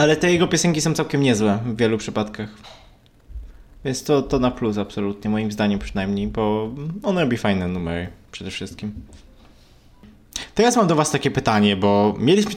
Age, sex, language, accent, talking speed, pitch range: 20-39, male, Polish, native, 160 wpm, 105-135 Hz